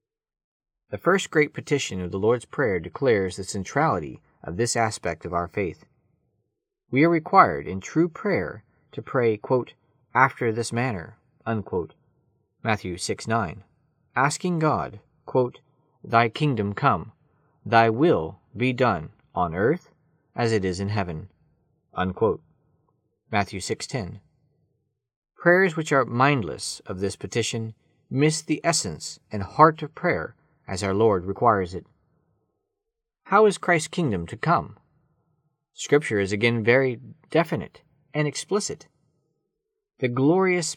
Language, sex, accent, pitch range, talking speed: English, male, American, 105-150 Hz, 130 wpm